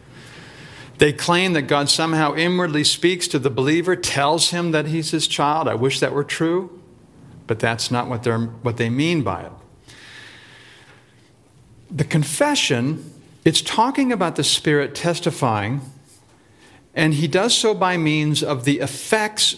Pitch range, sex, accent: 125-155 Hz, male, American